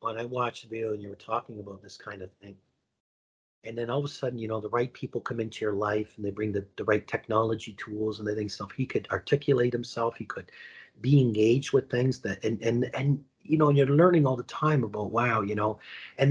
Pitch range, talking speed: 110-150 Hz, 255 wpm